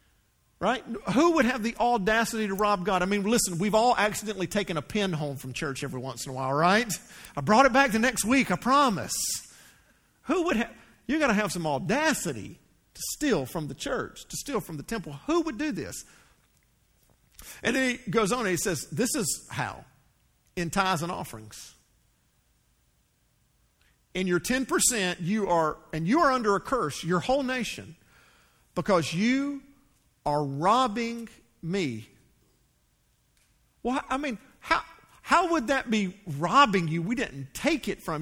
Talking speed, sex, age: 170 wpm, male, 50-69